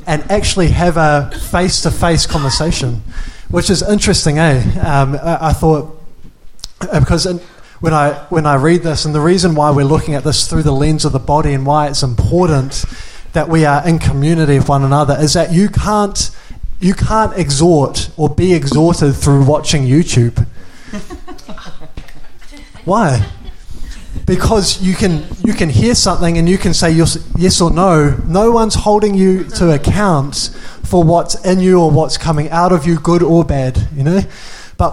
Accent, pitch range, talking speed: Australian, 145-185 Hz, 170 wpm